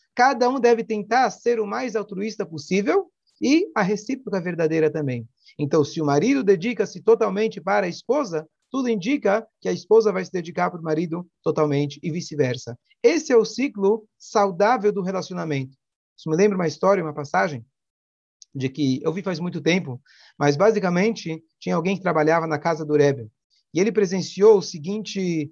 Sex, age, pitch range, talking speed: male, 40-59, 155-220 Hz, 170 wpm